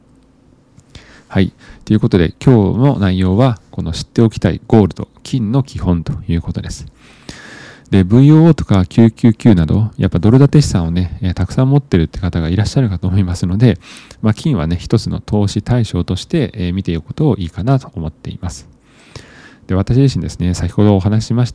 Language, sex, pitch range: Japanese, male, 90-120 Hz